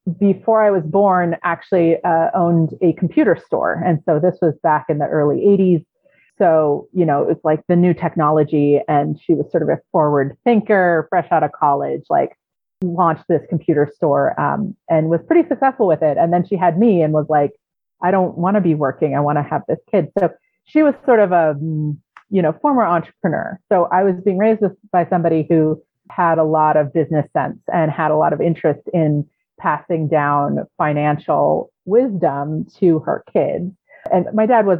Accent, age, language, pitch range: American, 30-49, English, 155-195 Hz